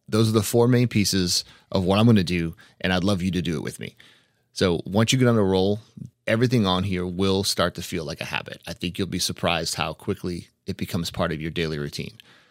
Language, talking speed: English, 250 wpm